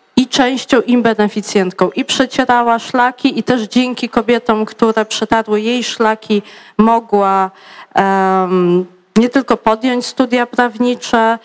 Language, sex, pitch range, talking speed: Polish, female, 205-235 Hz, 115 wpm